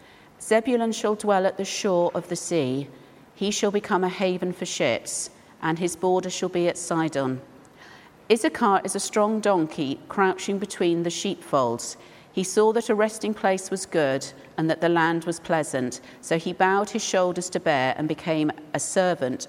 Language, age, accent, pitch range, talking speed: English, 50-69, British, 155-195 Hz, 175 wpm